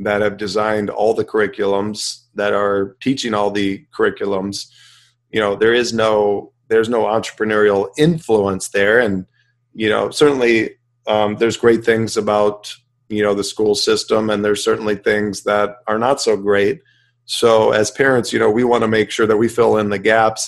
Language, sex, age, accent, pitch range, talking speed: English, male, 40-59, American, 105-120 Hz, 180 wpm